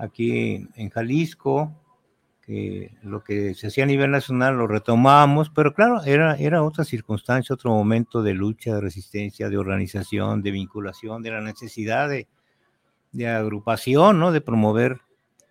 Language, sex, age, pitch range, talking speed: Spanish, male, 50-69, 110-150 Hz, 150 wpm